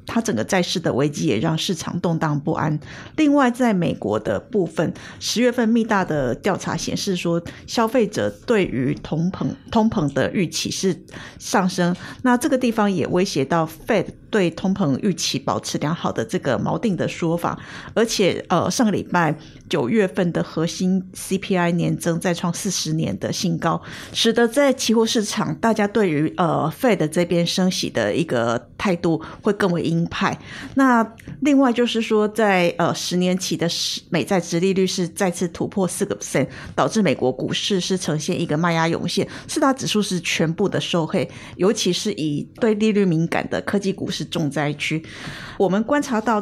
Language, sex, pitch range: Chinese, female, 165-215 Hz